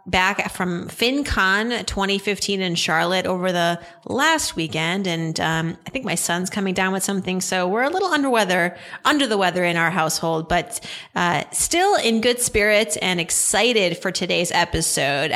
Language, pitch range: English, 175-225 Hz